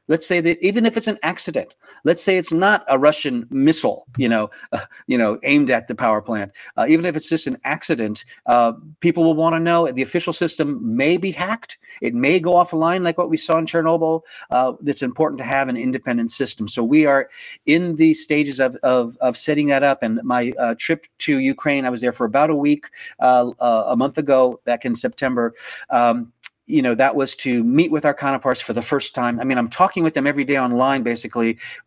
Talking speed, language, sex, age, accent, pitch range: 225 wpm, English, male, 40-59, American, 120-155 Hz